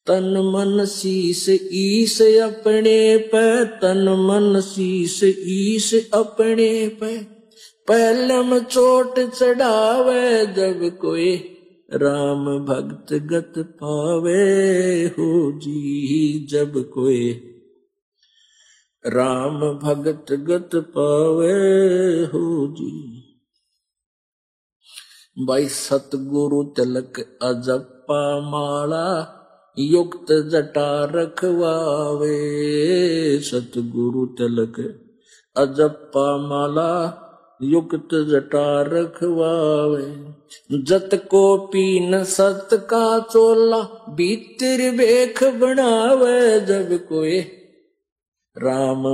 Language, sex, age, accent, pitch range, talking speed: Hindi, male, 50-69, native, 145-205 Hz, 70 wpm